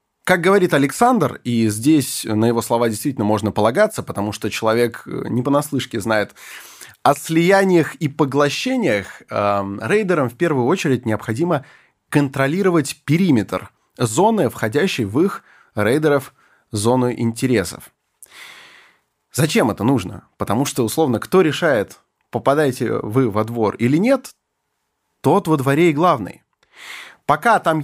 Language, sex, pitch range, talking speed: Russian, male, 120-185 Hz, 125 wpm